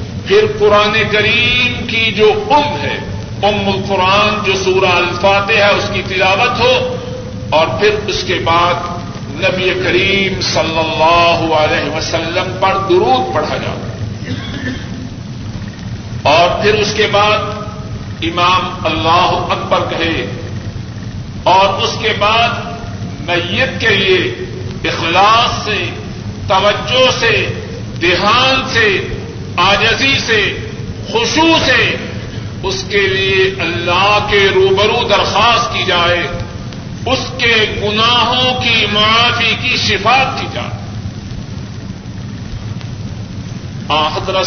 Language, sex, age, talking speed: Urdu, male, 50-69, 105 wpm